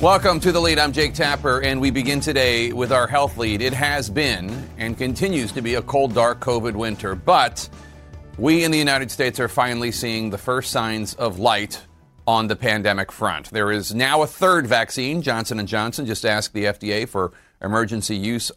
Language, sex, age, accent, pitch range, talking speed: English, male, 40-59, American, 110-145 Hz, 195 wpm